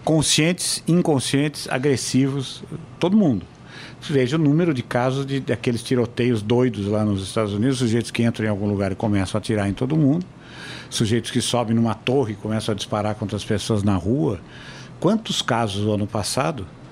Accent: Brazilian